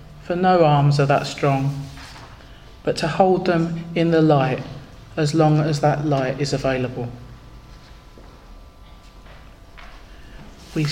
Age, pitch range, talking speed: 40-59, 135-165 Hz, 115 wpm